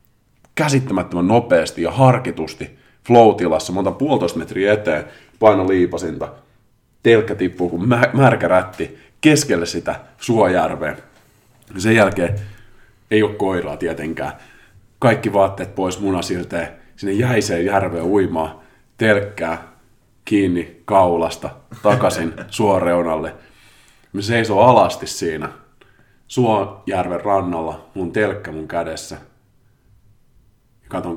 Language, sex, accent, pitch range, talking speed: Finnish, male, native, 85-120 Hz, 100 wpm